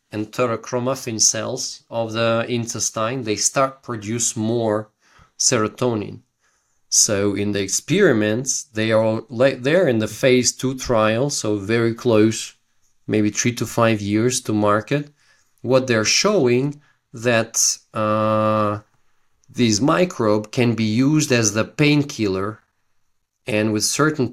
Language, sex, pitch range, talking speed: English, male, 105-130 Hz, 120 wpm